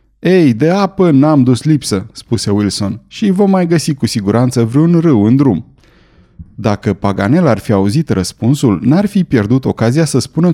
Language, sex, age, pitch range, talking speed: Romanian, male, 30-49, 115-155 Hz, 170 wpm